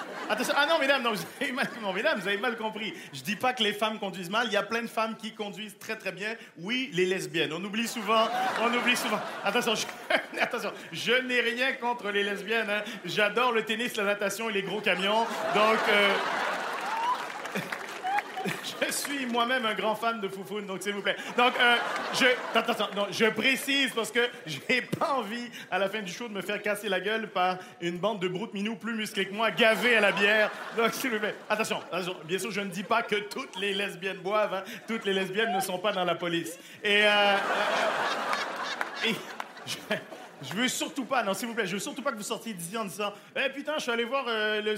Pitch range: 200-240 Hz